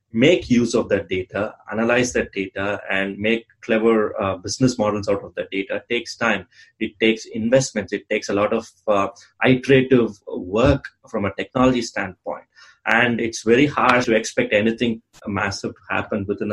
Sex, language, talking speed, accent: male, English, 170 wpm, Indian